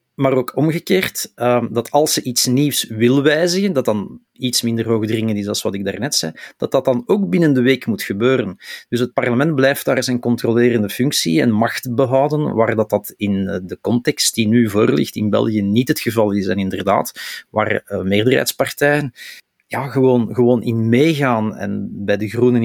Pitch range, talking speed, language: 110-130 Hz, 180 wpm, Dutch